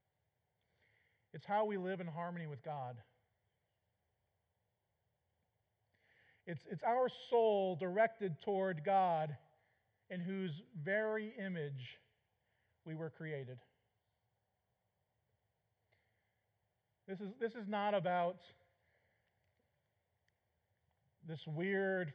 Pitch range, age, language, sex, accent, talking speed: 115-190 Hz, 40-59, English, male, American, 80 wpm